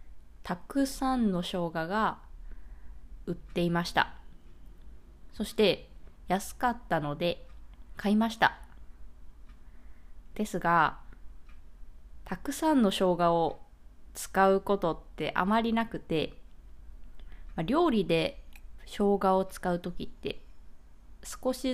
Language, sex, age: Japanese, female, 20-39